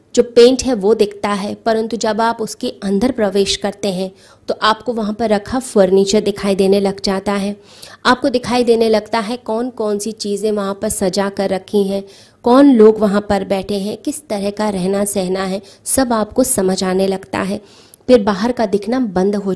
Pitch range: 200-240 Hz